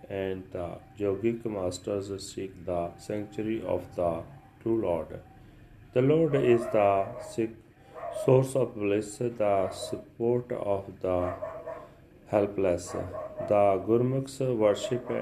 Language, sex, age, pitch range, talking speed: Punjabi, male, 30-49, 95-115 Hz, 105 wpm